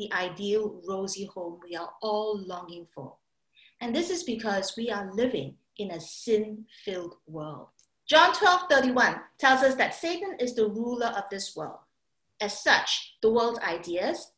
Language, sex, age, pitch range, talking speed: English, female, 50-69, 195-275 Hz, 160 wpm